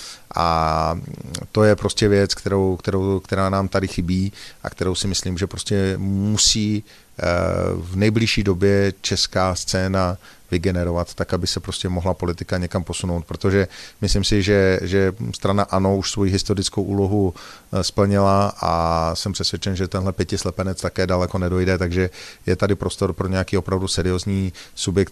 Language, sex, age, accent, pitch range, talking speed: Czech, male, 40-59, native, 95-100 Hz, 145 wpm